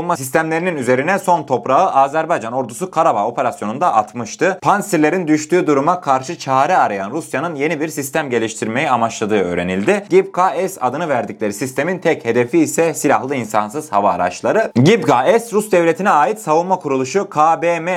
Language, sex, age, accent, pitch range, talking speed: Turkish, male, 30-49, native, 120-170 Hz, 135 wpm